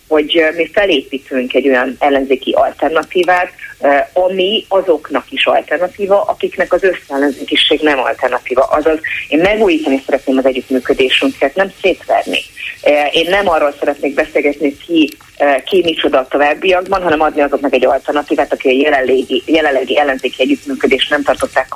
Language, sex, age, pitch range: Hungarian, female, 30-49, 135-170 Hz